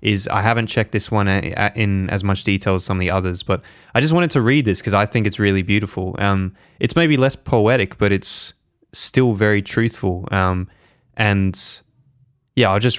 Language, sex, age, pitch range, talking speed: English, male, 20-39, 100-115 Hz, 200 wpm